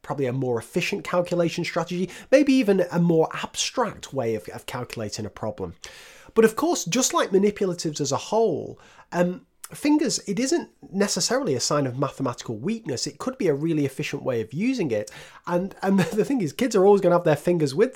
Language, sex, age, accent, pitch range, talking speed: English, male, 30-49, British, 120-175 Hz, 195 wpm